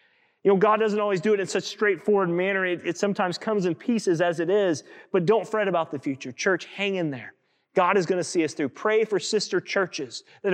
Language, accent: English, American